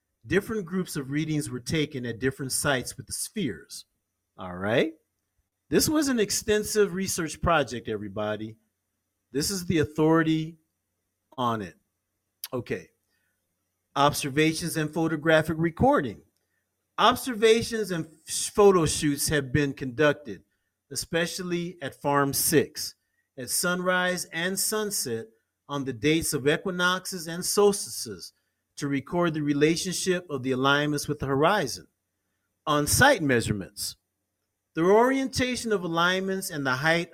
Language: English